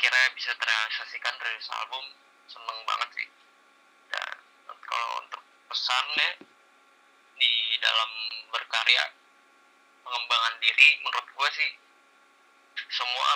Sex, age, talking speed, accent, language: male, 20-39, 95 wpm, native, Indonesian